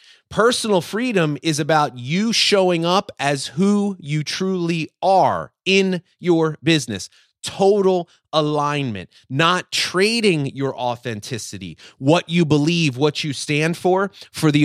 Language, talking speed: English, 125 wpm